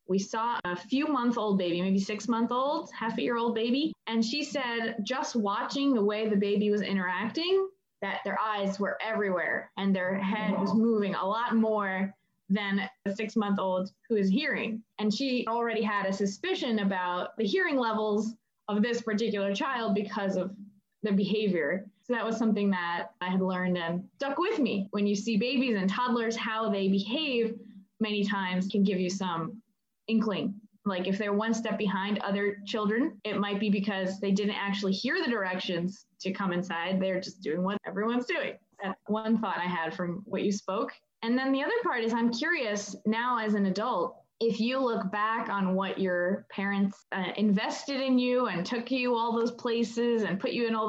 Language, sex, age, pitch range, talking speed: English, female, 20-39, 195-230 Hz, 185 wpm